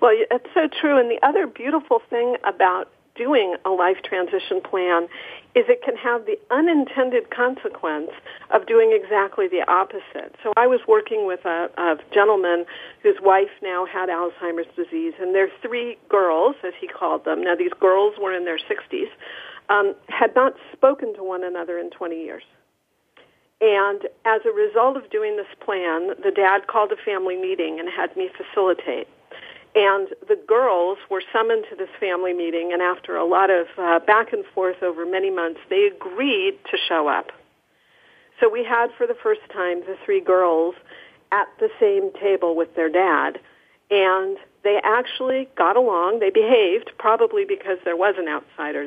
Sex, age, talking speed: female, 50-69, 170 wpm